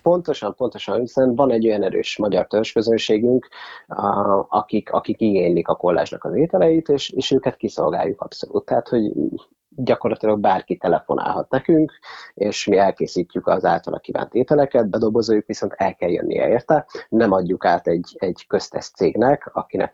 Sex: male